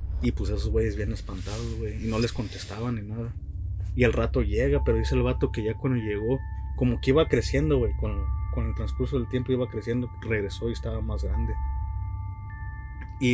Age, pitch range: 20-39, 85-120 Hz